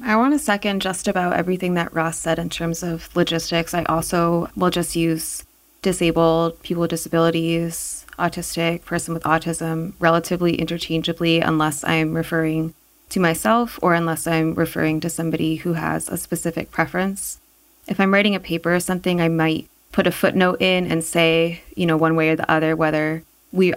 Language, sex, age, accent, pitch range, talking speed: English, female, 20-39, American, 160-180 Hz, 175 wpm